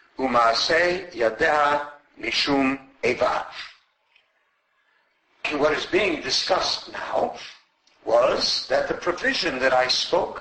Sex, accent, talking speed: male, American, 75 wpm